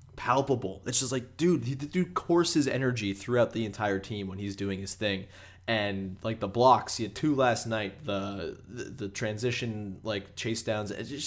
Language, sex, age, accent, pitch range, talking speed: English, male, 20-39, American, 105-130 Hz, 180 wpm